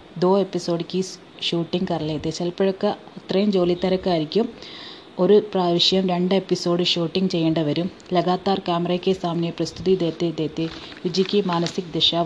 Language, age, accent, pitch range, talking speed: Hindi, 30-49, native, 170-190 Hz, 110 wpm